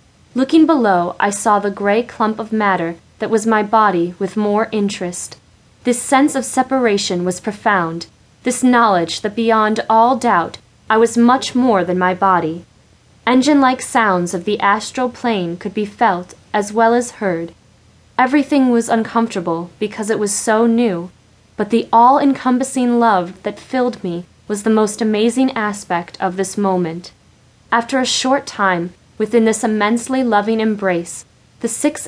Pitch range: 185-240 Hz